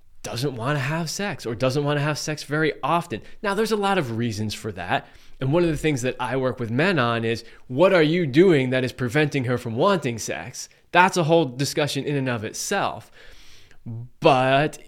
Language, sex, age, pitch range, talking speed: English, male, 20-39, 115-160 Hz, 215 wpm